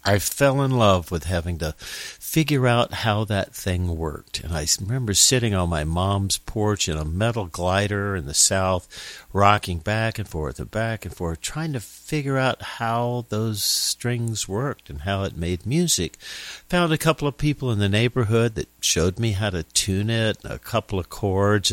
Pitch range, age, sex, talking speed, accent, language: 90-115 Hz, 50-69, male, 190 wpm, American, English